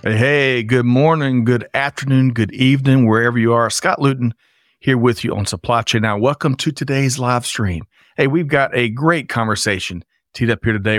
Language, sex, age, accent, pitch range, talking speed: English, male, 40-59, American, 110-135 Hz, 185 wpm